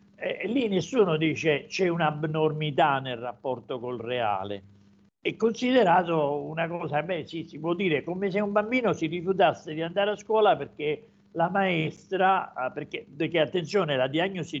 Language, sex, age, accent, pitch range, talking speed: Italian, male, 50-69, native, 130-180 Hz, 150 wpm